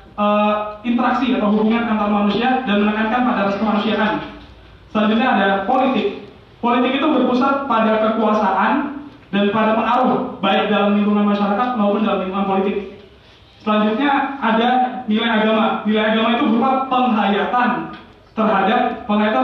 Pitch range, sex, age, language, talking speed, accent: 205-245 Hz, male, 20-39, Indonesian, 120 wpm, native